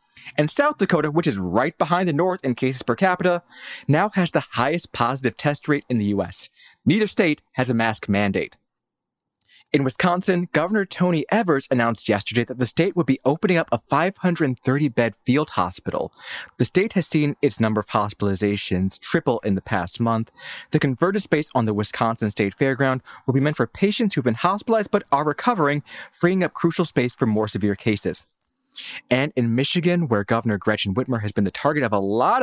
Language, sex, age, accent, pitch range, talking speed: English, male, 20-39, American, 110-170 Hz, 190 wpm